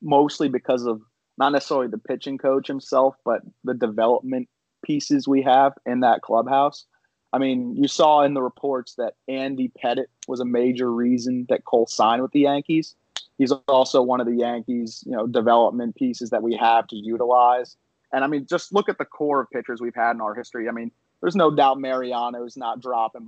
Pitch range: 120-145 Hz